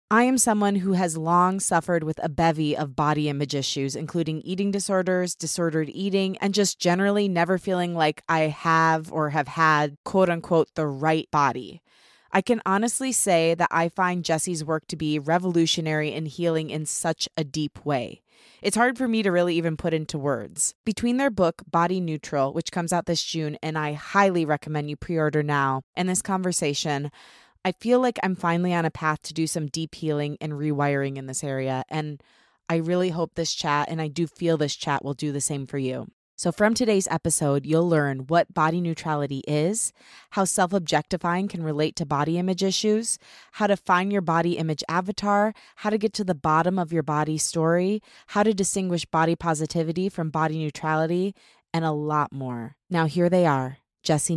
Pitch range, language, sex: 150-185 Hz, English, female